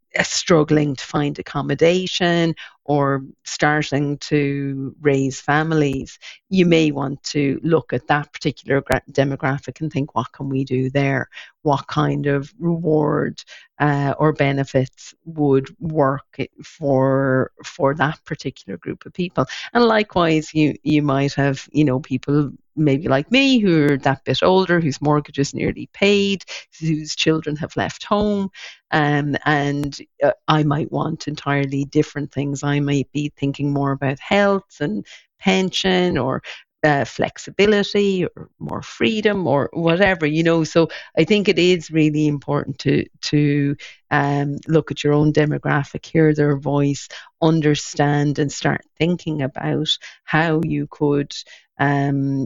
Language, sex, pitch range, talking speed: English, female, 140-160 Hz, 140 wpm